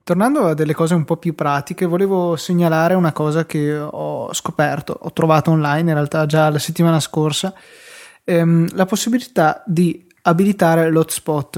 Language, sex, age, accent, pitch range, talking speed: Italian, male, 20-39, native, 150-170 Hz, 155 wpm